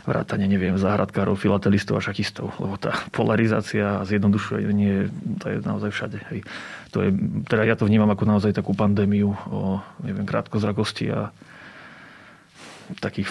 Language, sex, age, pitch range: Slovak, male, 30-49, 100-110 Hz